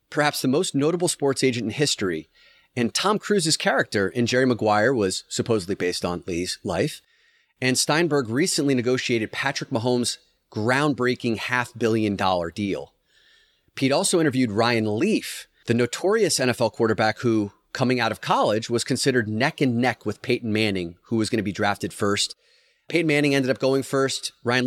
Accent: American